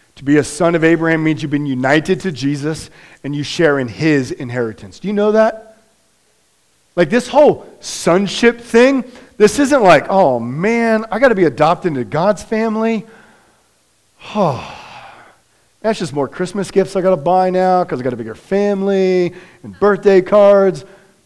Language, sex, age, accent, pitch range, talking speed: English, male, 40-59, American, 165-225 Hz, 170 wpm